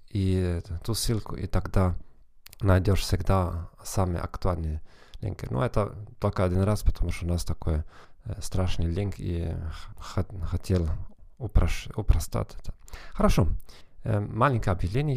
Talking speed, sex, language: 120 wpm, male, Russian